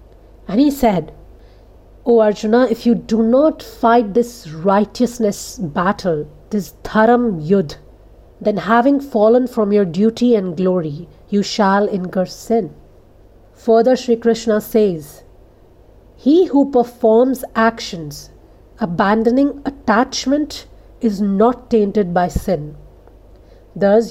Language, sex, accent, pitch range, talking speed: English, female, Indian, 185-235 Hz, 110 wpm